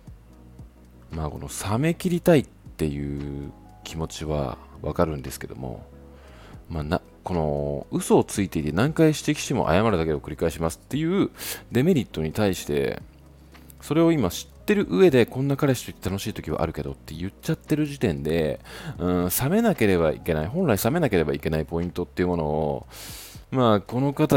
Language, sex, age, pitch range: Japanese, male, 40-59, 75-115 Hz